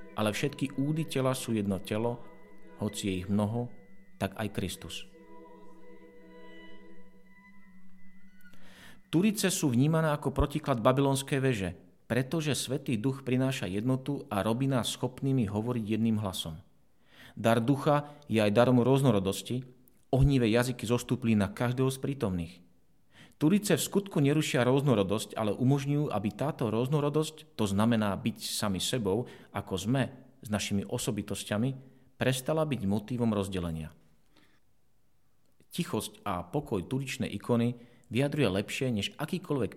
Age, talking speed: 40-59, 120 wpm